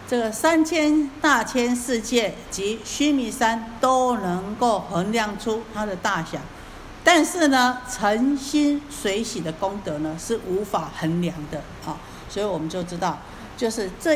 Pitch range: 185-240 Hz